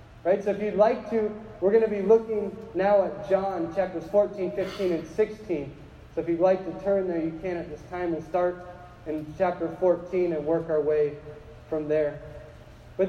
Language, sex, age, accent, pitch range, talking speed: English, male, 20-39, American, 165-210 Hz, 195 wpm